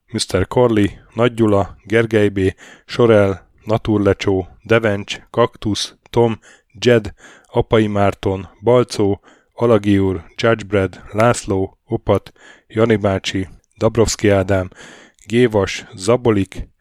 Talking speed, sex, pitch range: 90 wpm, male, 100-115 Hz